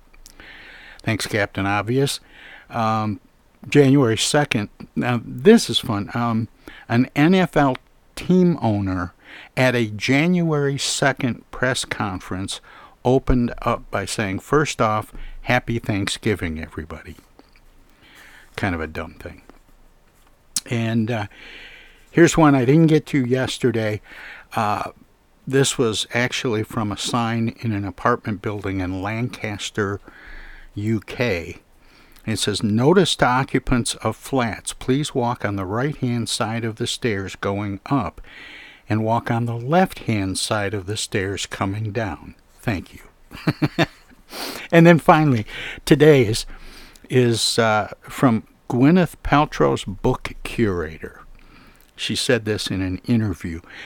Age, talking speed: 60-79, 120 wpm